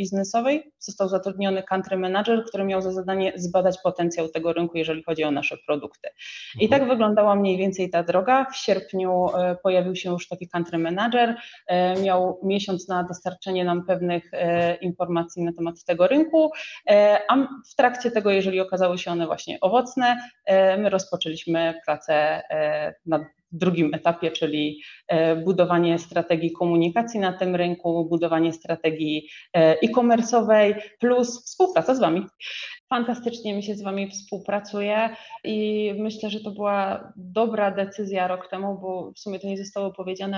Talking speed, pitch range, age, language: 145 wpm, 175-205 Hz, 20-39, Polish